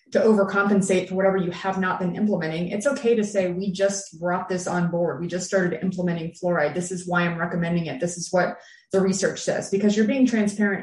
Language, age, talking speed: English, 30-49, 220 wpm